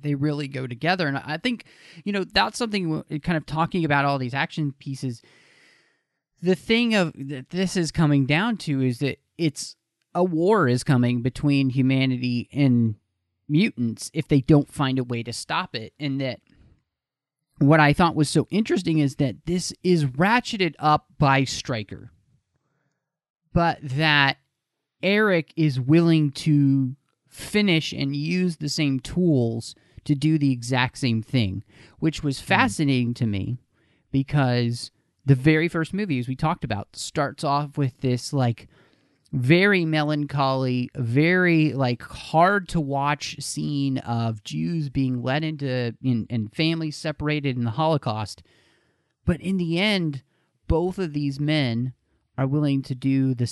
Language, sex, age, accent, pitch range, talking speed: English, male, 30-49, American, 125-160 Hz, 150 wpm